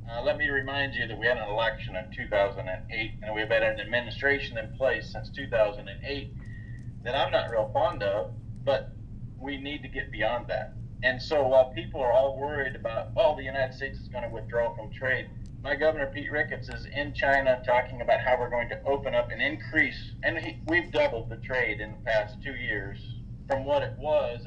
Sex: male